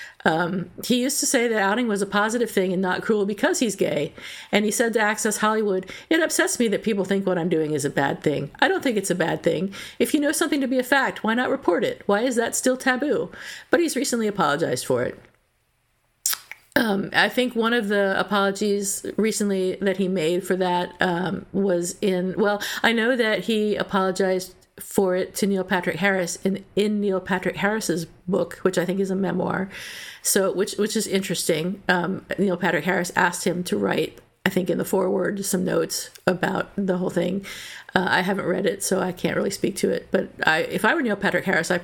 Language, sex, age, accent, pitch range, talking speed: English, female, 50-69, American, 180-215 Hz, 215 wpm